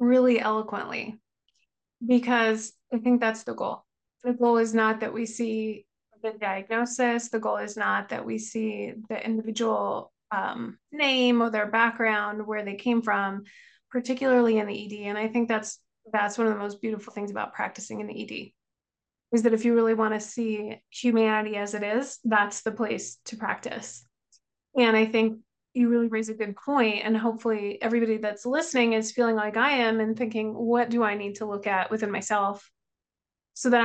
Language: English